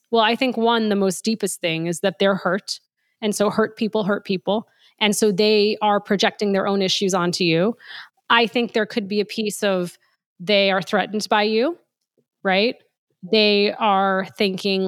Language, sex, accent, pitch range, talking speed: English, female, American, 195-245 Hz, 180 wpm